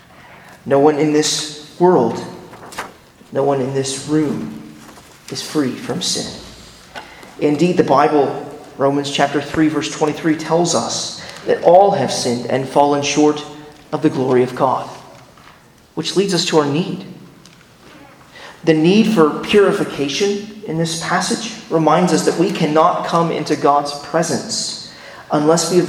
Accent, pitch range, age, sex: American, 150-185 Hz, 30-49, male